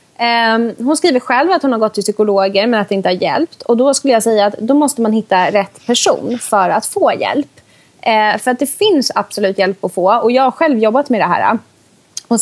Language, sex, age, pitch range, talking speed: English, female, 20-39, 195-255 Hz, 230 wpm